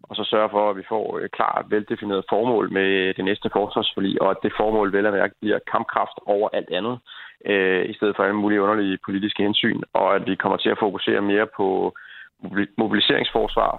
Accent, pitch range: native, 100-110 Hz